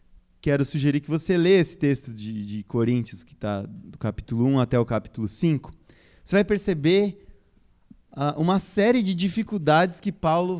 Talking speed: 160 wpm